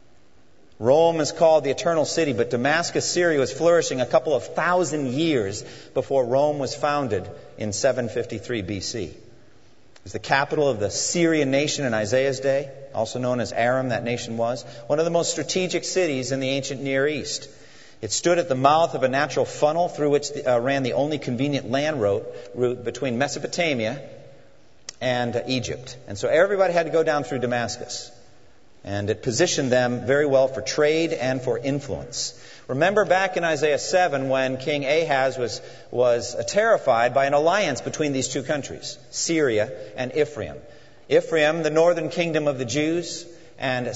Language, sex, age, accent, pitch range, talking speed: English, male, 40-59, American, 120-155 Hz, 170 wpm